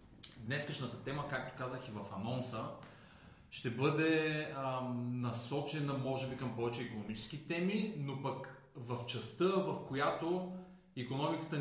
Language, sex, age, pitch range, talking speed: Bulgarian, male, 30-49, 125-160 Hz, 125 wpm